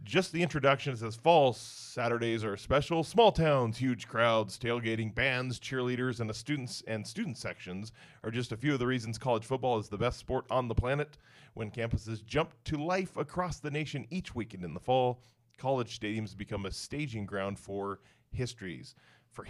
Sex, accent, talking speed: male, American, 180 wpm